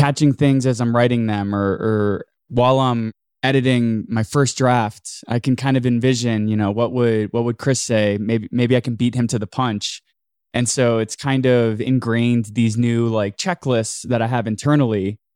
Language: English